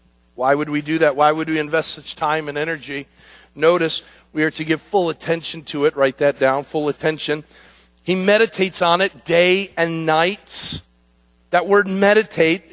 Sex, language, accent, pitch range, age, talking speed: male, English, American, 135-185 Hz, 50-69, 175 wpm